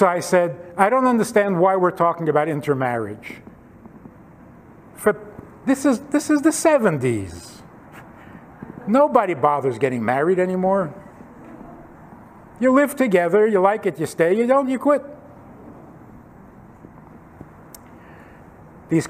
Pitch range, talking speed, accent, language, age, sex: 175-240 Hz, 115 wpm, American, English, 60-79, male